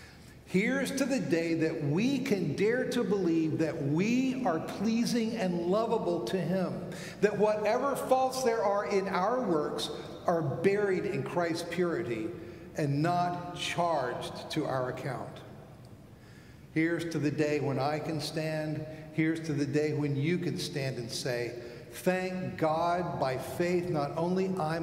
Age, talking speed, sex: 50-69, 150 wpm, male